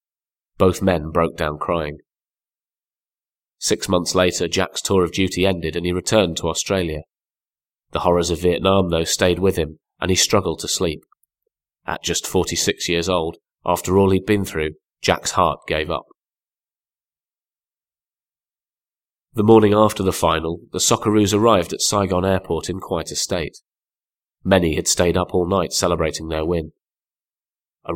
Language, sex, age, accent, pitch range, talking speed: English, male, 30-49, British, 85-95 Hz, 150 wpm